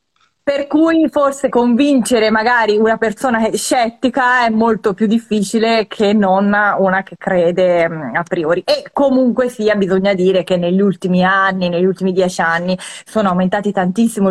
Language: Italian